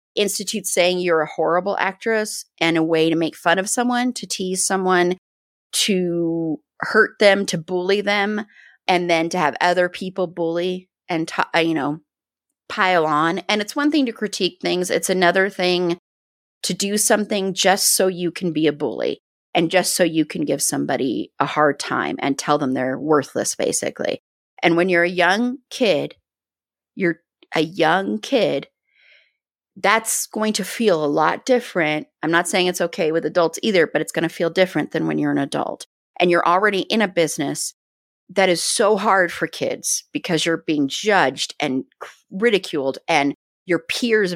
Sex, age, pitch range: female, 30-49, 160-190 Hz